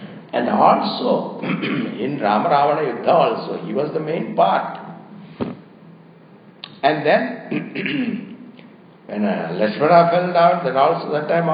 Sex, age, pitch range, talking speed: male, 60-79, 155-205 Hz, 115 wpm